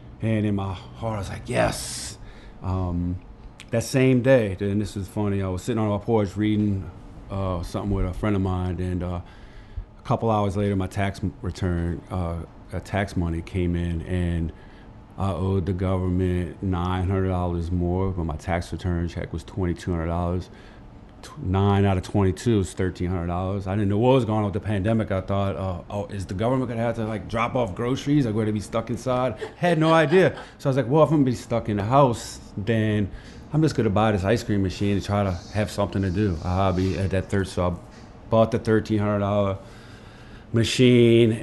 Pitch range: 90-110 Hz